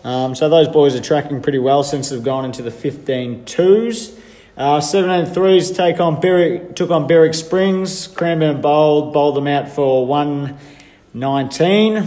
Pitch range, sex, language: 130-155 Hz, male, English